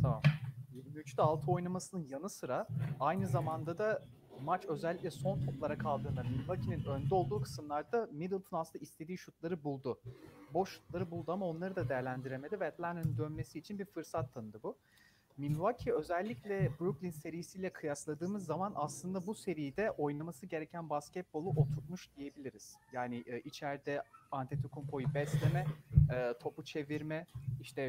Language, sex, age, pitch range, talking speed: Turkish, male, 40-59, 140-170 Hz, 125 wpm